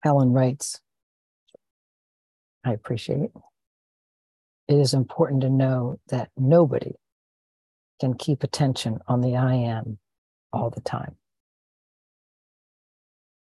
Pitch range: 120-140 Hz